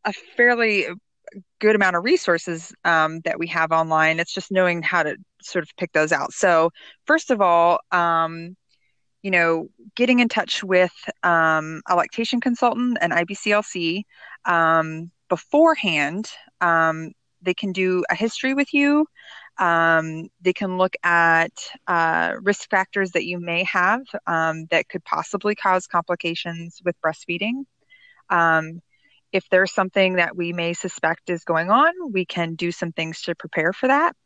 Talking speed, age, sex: 155 wpm, 20-39, female